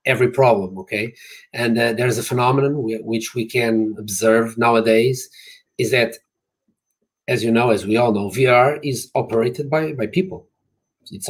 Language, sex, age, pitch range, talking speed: English, male, 30-49, 110-130 Hz, 165 wpm